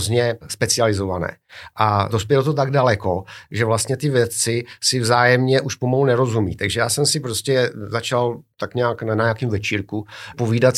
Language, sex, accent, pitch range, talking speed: Czech, male, native, 110-125 Hz, 155 wpm